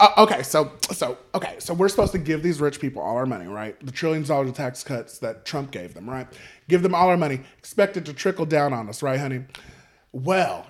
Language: English